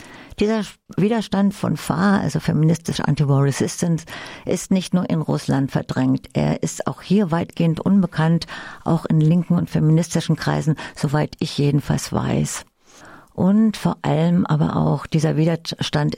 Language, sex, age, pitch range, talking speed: German, female, 50-69, 145-175 Hz, 135 wpm